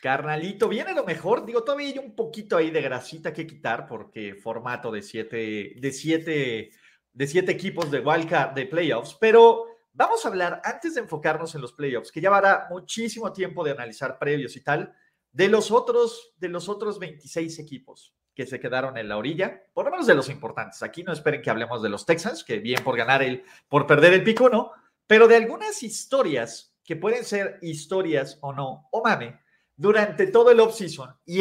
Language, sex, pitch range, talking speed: Spanish, male, 150-215 Hz, 195 wpm